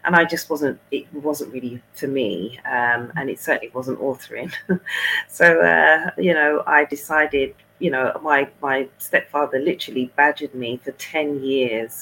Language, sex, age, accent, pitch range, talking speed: English, female, 30-49, British, 125-145 Hz, 160 wpm